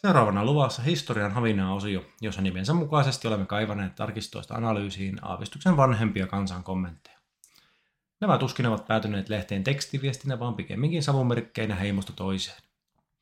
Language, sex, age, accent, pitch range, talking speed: Finnish, male, 30-49, native, 100-130 Hz, 125 wpm